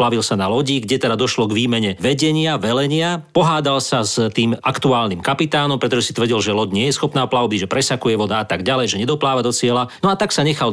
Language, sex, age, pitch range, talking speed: Slovak, male, 40-59, 115-145 Hz, 230 wpm